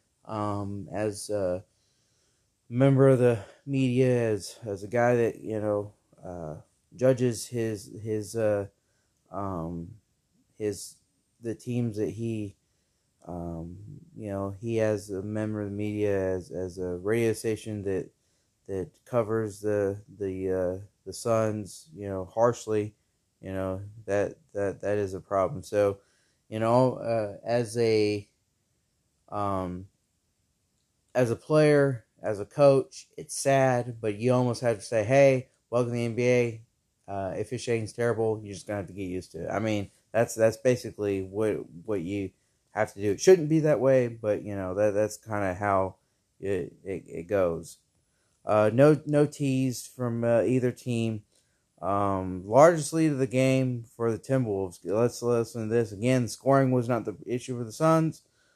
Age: 20-39